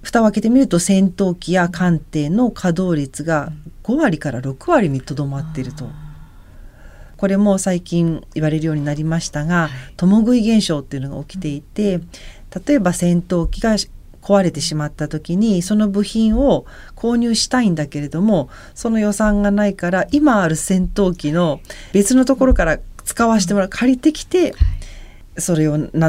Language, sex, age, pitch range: Japanese, female, 40-59, 150-200 Hz